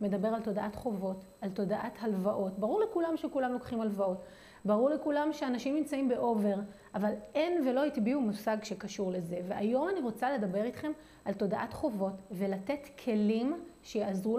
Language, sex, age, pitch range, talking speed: Hebrew, female, 30-49, 205-275 Hz, 145 wpm